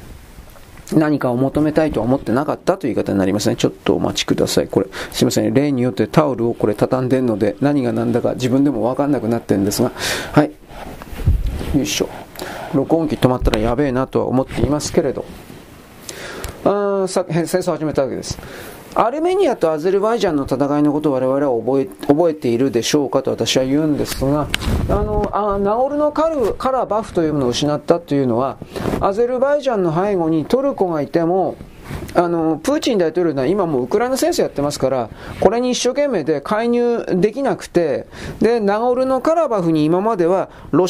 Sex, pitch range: male, 140-230 Hz